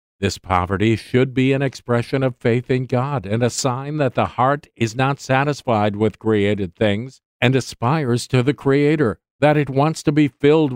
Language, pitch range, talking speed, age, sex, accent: English, 115-145 Hz, 185 wpm, 50-69, male, American